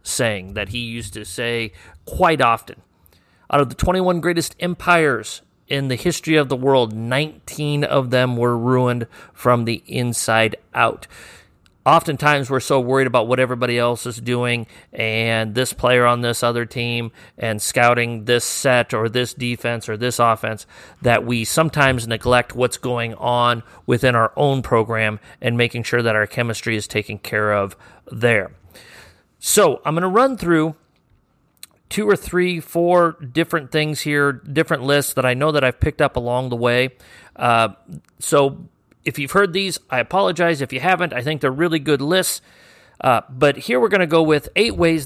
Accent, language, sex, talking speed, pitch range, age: American, English, male, 175 wpm, 115-150 Hz, 40-59